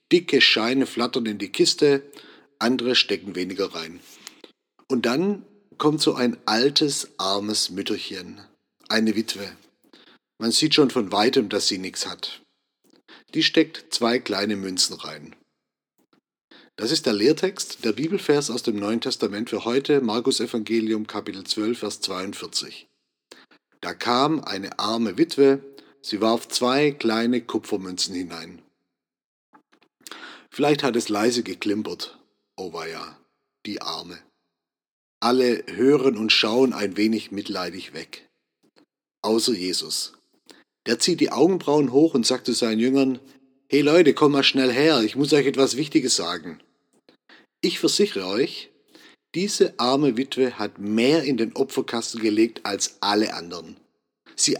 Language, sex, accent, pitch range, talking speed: German, male, German, 110-140 Hz, 135 wpm